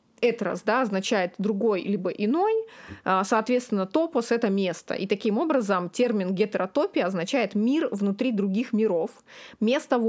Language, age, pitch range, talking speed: Russian, 20-39, 195-240 Hz, 125 wpm